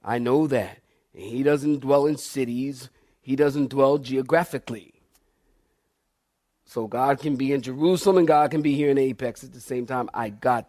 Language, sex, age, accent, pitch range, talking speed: English, male, 40-59, American, 120-145 Hz, 175 wpm